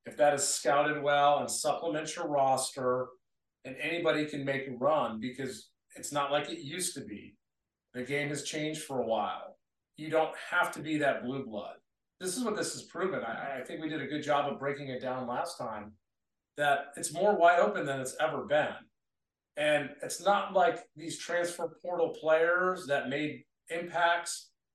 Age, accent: 40-59, American